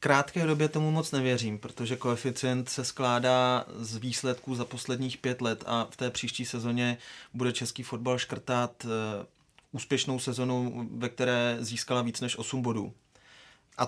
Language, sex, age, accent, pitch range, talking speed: Czech, male, 30-49, native, 120-130 Hz, 150 wpm